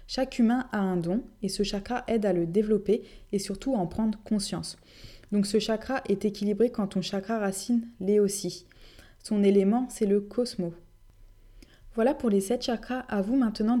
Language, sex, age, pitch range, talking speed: French, female, 20-39, 190-225 Hz, 185 wpm